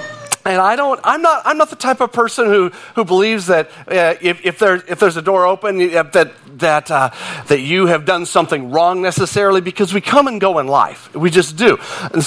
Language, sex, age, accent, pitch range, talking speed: English, male, 40-59, American, 155-215 Hz, 220 wpm